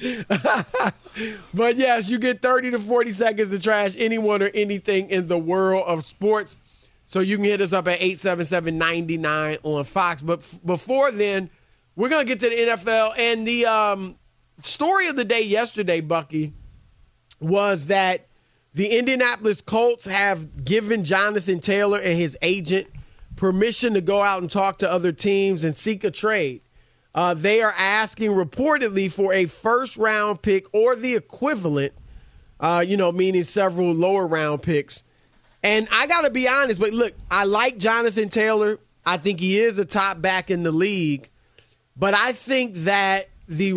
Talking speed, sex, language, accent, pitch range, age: 160 wpm, male, English, American, 180-225 Hz, 40-59